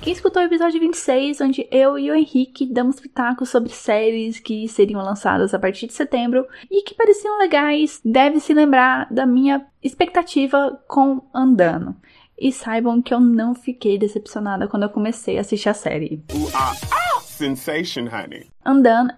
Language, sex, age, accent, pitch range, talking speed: Portuguese, female, 10-29, Brazilian, 230-300 Hz, 150 wpm